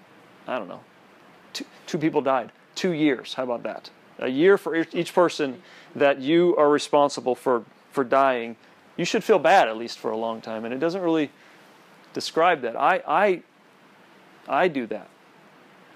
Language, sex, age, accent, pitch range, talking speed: English, male, 40-59, American, 120-145 Hz, 170 wpm